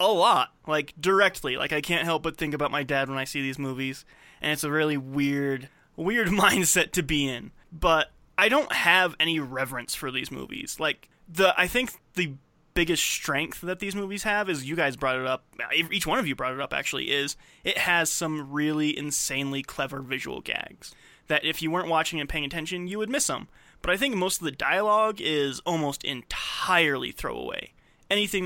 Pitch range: 140-180 Hz